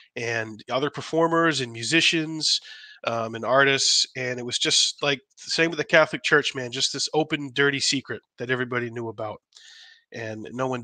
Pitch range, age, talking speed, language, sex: 120-150 Hz, 30-49, 175 wpm, English, male